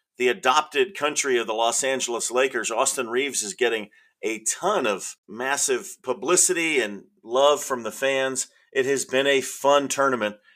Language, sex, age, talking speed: English, male, 40-59, 160 wpm